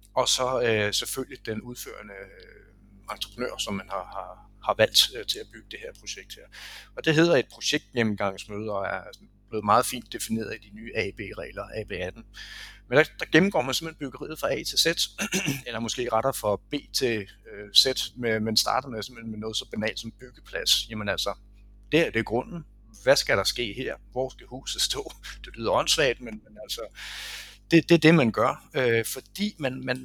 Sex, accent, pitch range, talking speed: male, native, 110-150 Hz, 200 wpm